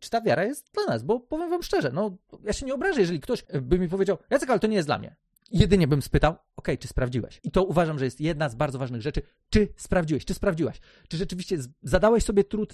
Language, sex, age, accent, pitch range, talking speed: Polish, male, 30-49, native, 150-220 Hz, 245 wpm